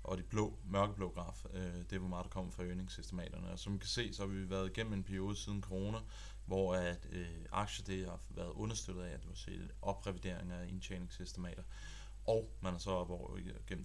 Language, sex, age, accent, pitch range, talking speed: Danish, male, 30-49, native, 90-100 Hz, 210 wpm